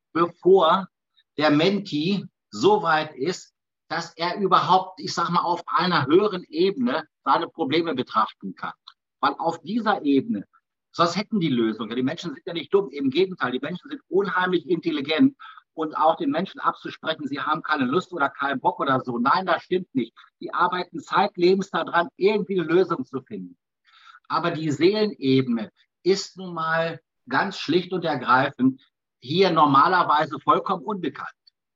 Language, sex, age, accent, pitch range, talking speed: German, male, 60-79, German, 150-190 Hz, 155 wpm